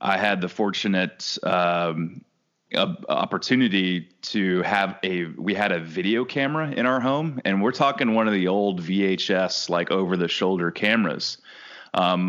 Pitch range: 90-115 Hz